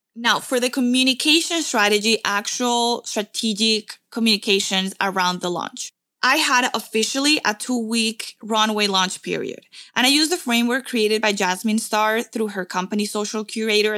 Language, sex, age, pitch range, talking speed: English, female, 20-39, 200-245 Hz, 140 wpm